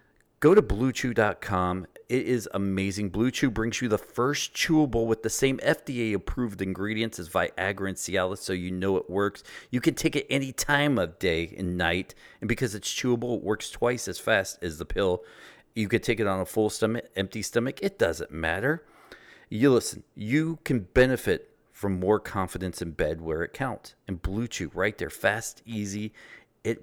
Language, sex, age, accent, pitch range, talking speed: English, male, 40-59, American, 95-125 Hz, 185 wpm